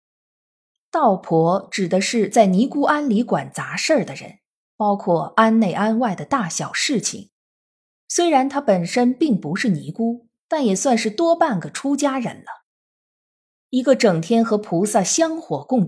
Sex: female